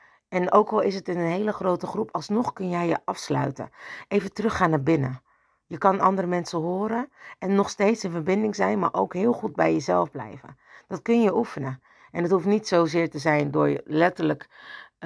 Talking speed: 205 wpm